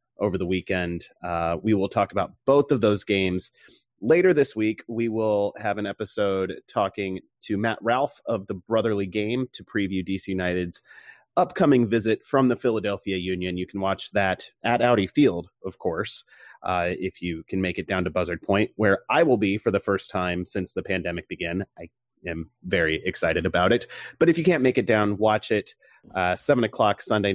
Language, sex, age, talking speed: English, male, 30-49, 195 wpm